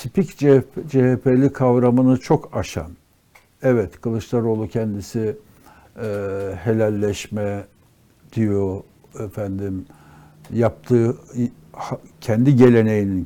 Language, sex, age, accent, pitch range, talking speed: Turkish, male, 60-79, native, 100-130 Hz, 75 wpm